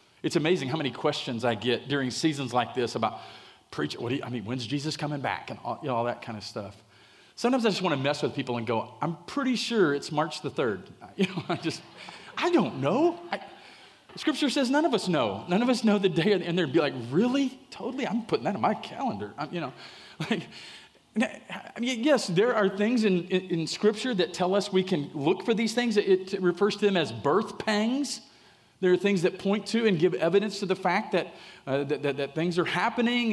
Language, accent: English, American